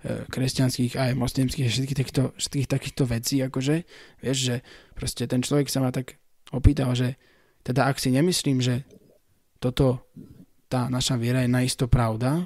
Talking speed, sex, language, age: 145 wpm, male, Slovak, 20-39